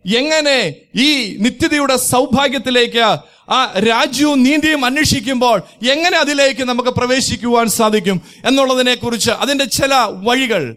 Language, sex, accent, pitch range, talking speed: Malayalam, male, native, 235-280 Hz, 100 wpm